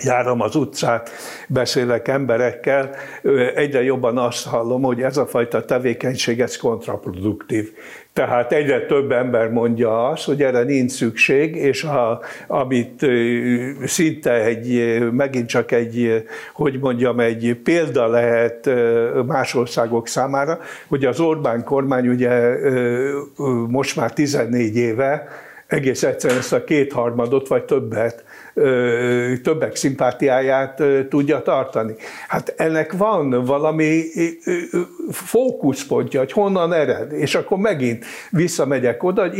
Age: 60-79